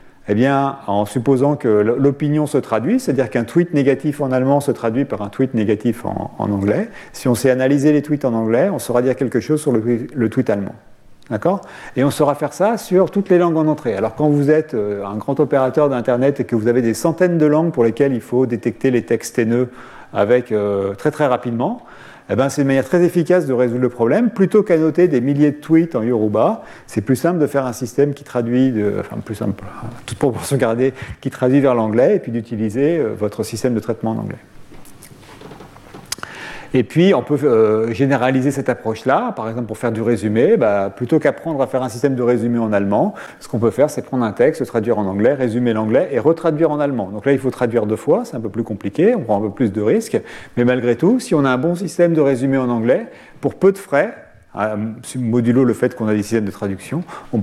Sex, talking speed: male, 230 wpm